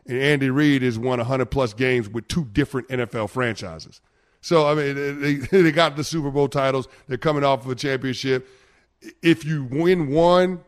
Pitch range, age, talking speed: 130-155 Hz, 30-49, 180 wpm